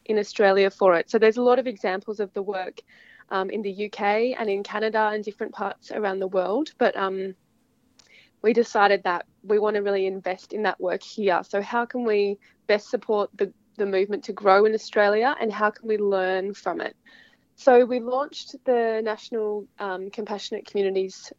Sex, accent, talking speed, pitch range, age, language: female, Australian, 190 wpm, 195-230 Hz, 20-39, English